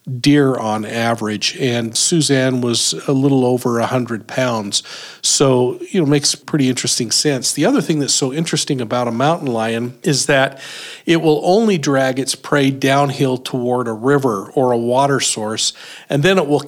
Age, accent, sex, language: 50-69, American, male, English